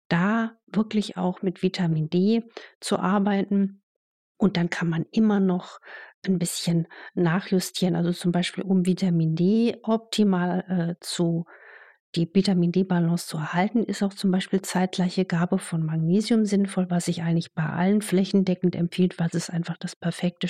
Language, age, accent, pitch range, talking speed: German, 50-69, German, 175-210 Hz, 150 wpm